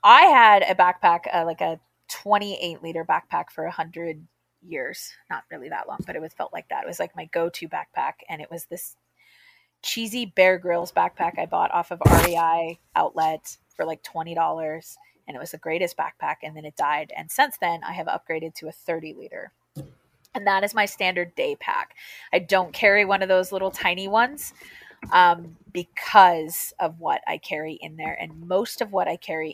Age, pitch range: 20-39, 165-195 Hz